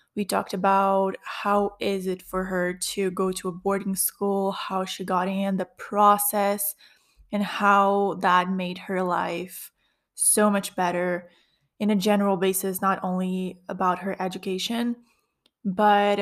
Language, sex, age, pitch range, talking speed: English, female, 20-39, 190-210 Hz, 145 wpm